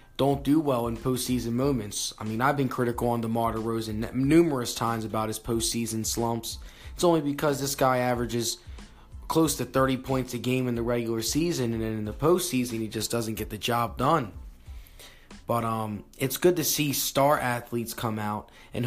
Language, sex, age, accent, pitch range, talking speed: English, male, 20-39, American, 110-140 Hz, 190 wpm